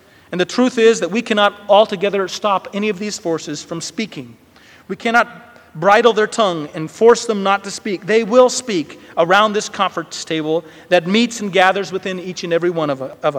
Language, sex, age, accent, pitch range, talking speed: English, male, 40-59, American, 165-215 Hz, 195 wpm